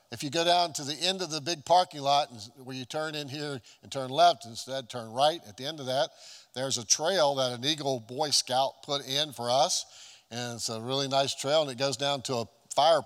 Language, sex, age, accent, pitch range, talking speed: English, male, 50-69, American, 120-145 Hz, 250 wpm